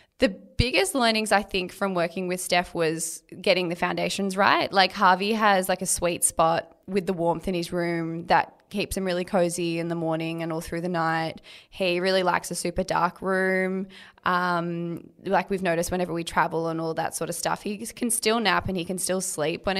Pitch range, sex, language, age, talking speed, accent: 170-195 Hz, female, English, 20-39, 210 wpm, Australian